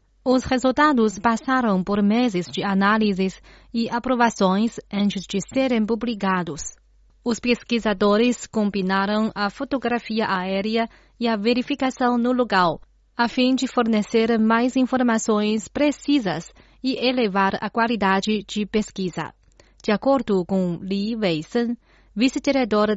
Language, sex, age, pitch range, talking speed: Portuguese, female, 30-49, 200-240 Hz, 115 wpm